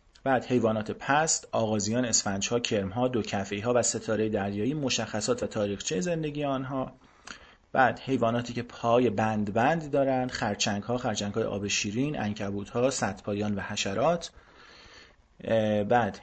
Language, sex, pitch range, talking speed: Persian, male, 105-135 Hz, 120 wpm